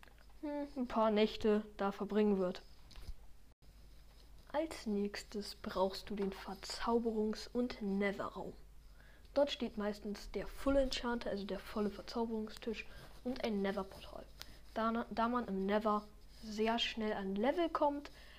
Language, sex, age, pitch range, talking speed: German, female, 10-29, 205-250 Hz, 120 wpm